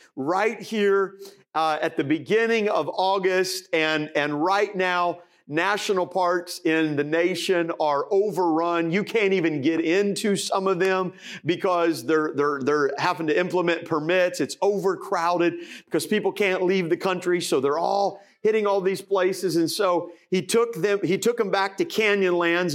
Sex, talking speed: male, 160 wpm